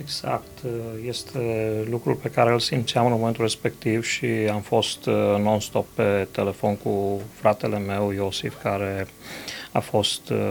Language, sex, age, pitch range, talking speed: Romanian, male, 30-49, 105-125 Hz, 130 wpm